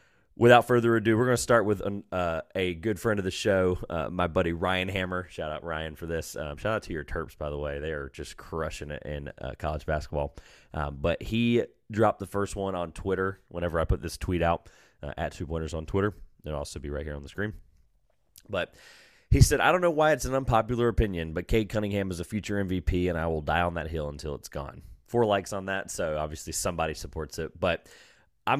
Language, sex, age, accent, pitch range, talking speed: English, male, 30-49, American, 80-95 Hz, 230 wpm